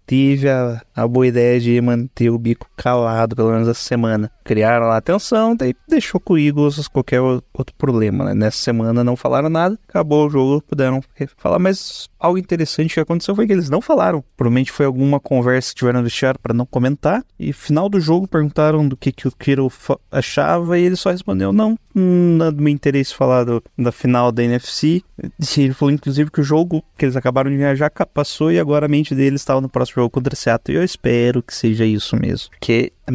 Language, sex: Portuguese, male